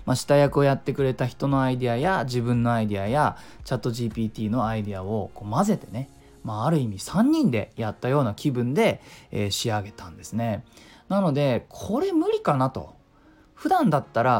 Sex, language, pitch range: male, Japanese, 120-185 Hz